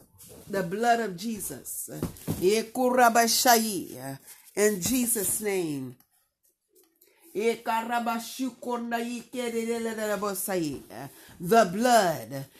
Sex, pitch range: female, 205-265 Hz